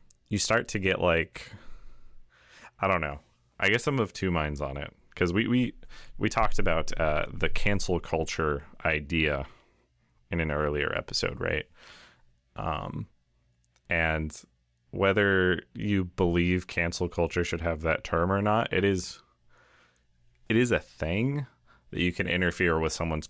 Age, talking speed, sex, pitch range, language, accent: 30-49, 145 wpm, male, 75-95 Hz, English, American